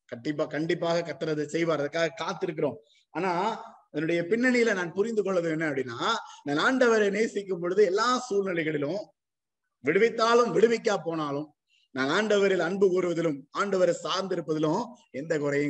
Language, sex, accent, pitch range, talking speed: Tamil, male, native, 160-245 Hz, 115 wpm